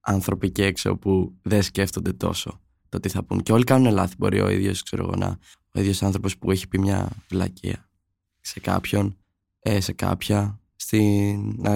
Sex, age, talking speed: male, 20-39, 155 wpm